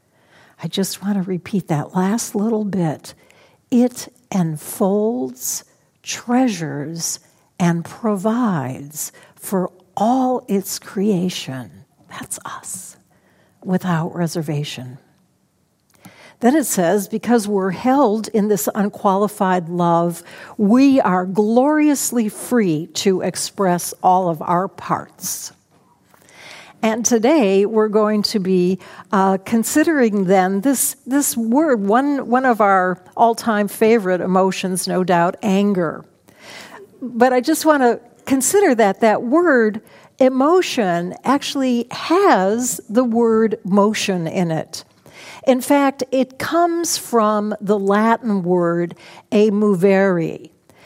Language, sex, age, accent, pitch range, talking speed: English, female, 60-79, American, 185-240 Hz, 105 wpm